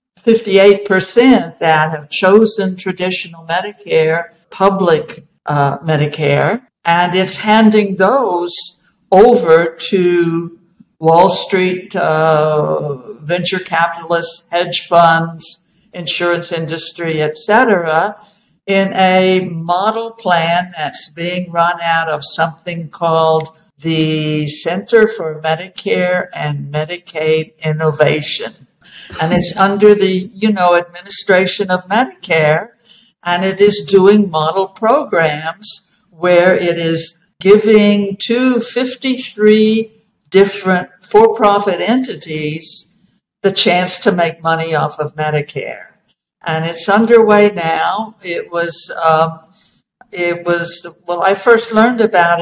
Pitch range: 165-200 Hz